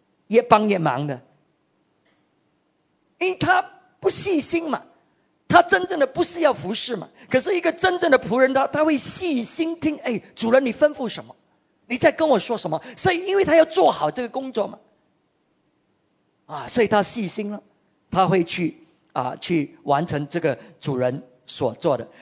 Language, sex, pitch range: English, male, 170-255 Hz